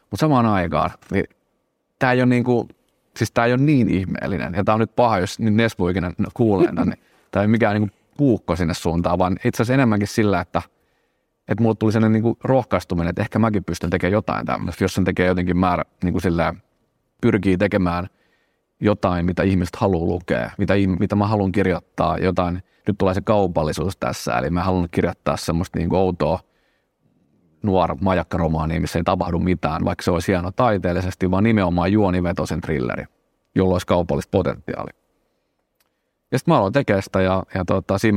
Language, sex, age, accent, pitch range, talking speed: Finnish, male, 30-49, native, 90-105 Hz, 175 wpm